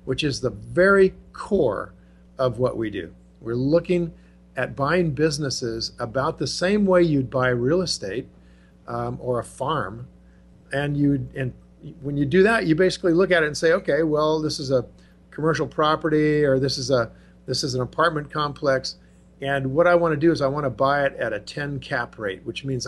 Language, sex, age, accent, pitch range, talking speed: English, male, 50-69, American, 120-160 Hz, 195 wpm